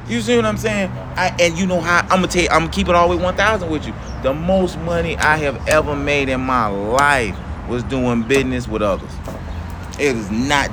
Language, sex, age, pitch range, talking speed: English, male, 30-49, 95-130 Hz, 230 wpm